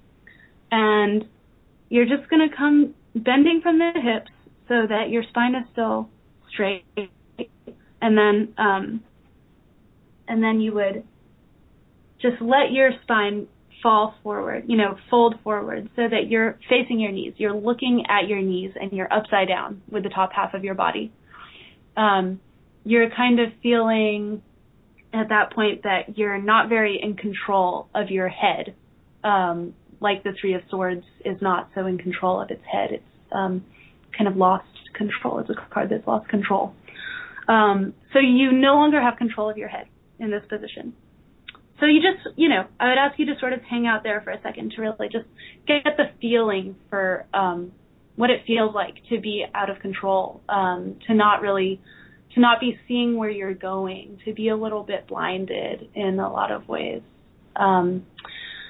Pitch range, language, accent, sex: 195-240 Hz, English, American, female